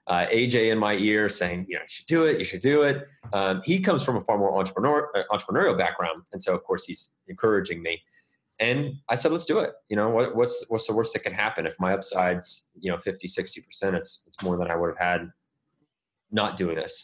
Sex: male